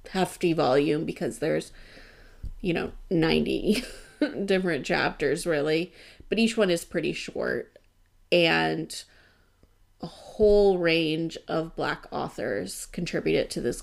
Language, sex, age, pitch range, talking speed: English, female, 30-49, 145-190 Hz, 115 wpm